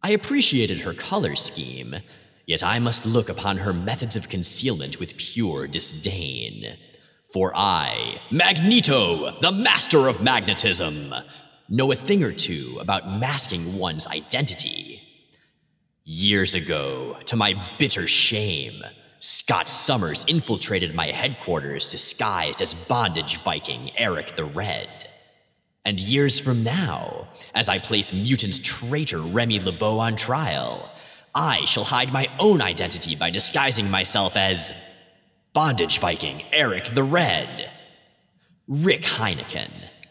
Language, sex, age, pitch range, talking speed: English, male, 30-49, 95-145 Hz, 120 wpm